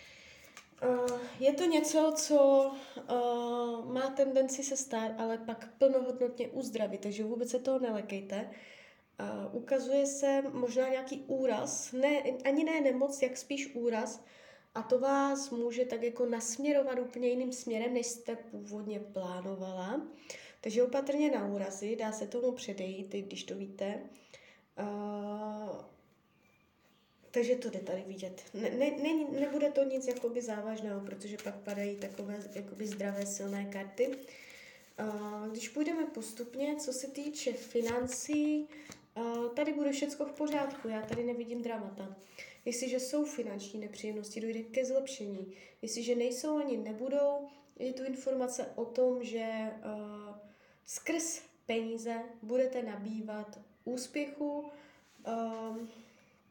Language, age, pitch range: Czech, 20-39, 215-275 Hz